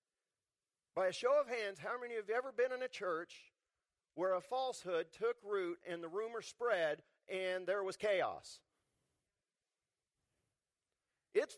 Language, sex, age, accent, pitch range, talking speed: English, male, 40-59, American, 190-270 Hz, 150 wpm